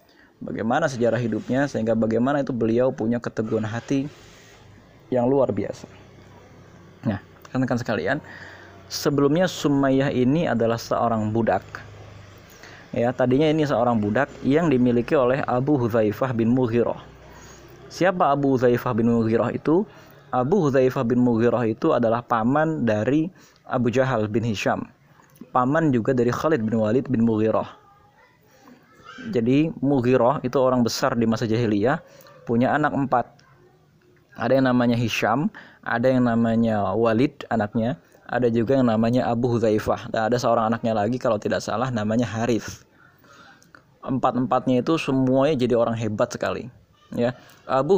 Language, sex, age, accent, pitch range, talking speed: Indonesian, male, 20-39, native, 115-135 Hz, 130 wpm